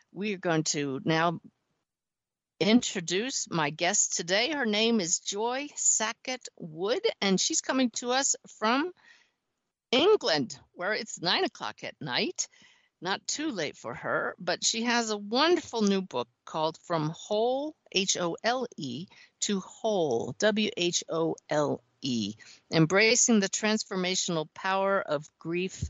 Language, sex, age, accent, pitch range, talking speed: English, female, 50-69, American, 160-215 Hz, 125 wpm